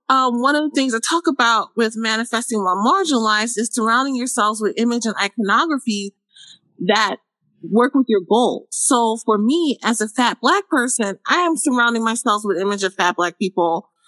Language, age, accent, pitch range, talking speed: English, 30-49, American, 205-265 Hz, 180 wpm